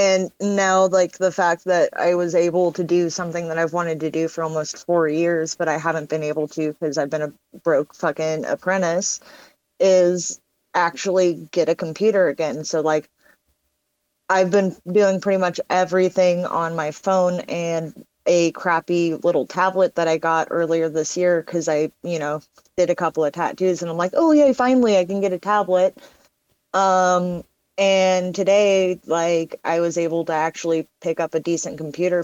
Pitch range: 160-185 Hz